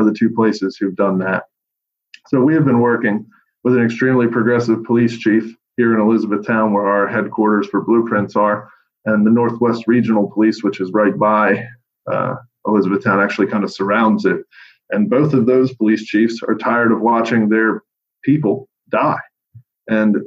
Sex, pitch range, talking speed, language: male, 105-120 Hz, 170 wpm, English